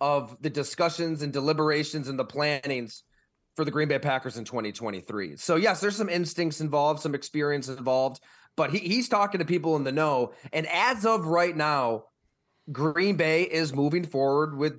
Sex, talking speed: male, 180 wpm